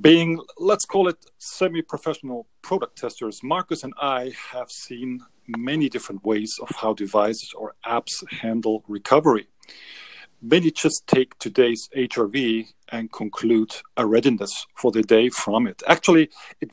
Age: 40-59